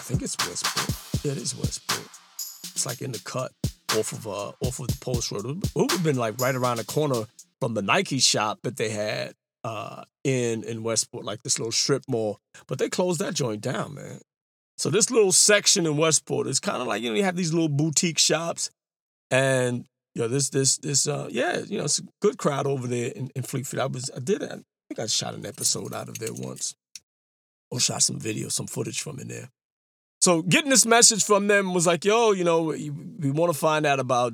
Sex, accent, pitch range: male, American, 125-170 Hz